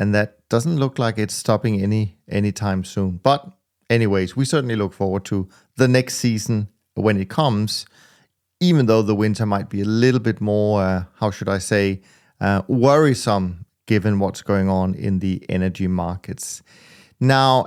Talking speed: 165 wpm